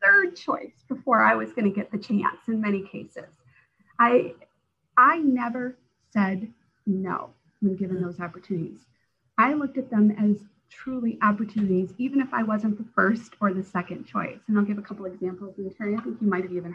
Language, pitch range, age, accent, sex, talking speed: English, 195-245 Hz, 30-49, American, female, 185 wpm